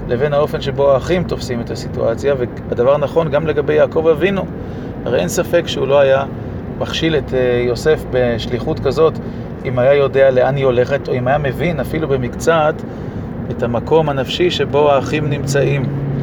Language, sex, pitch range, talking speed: Hebrew, male, 125-150 Hz, 155 wpm